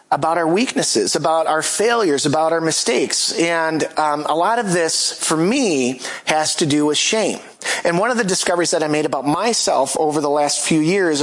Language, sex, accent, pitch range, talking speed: English, male, American, 145-190 Hz, 200 wpm